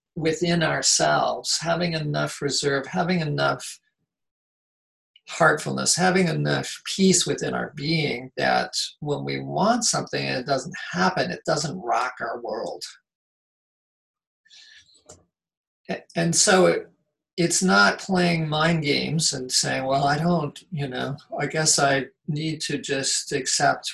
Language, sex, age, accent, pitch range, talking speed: English, male, 50-69, American, 135-170 Hz, 125 wpm